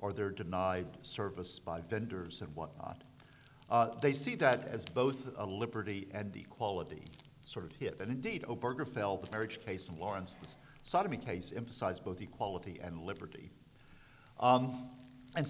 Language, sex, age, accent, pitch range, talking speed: English, male, 50-69, American, 105-135 Hz, 150 wpm